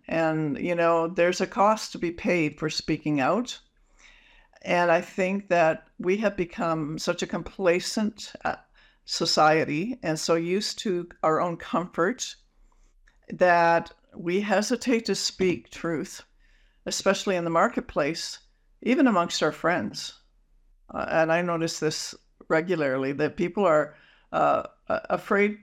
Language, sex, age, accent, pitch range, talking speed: English, female, 60-79, American, 160-195 Hz, 130 wpm